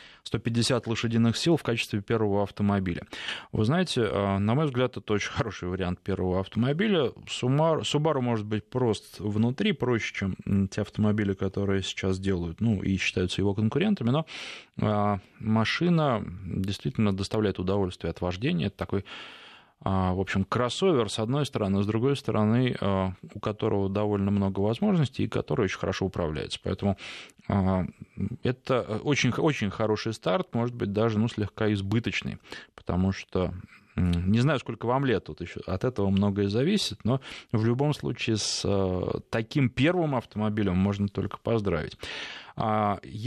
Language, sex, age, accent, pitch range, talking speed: Russian, male, 20-39, native, 100-120 Hz, 140 wpm